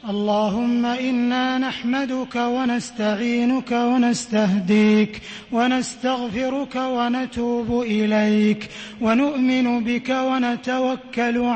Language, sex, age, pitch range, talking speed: English, male, 30-49, 225-260 Hz, 55 wpm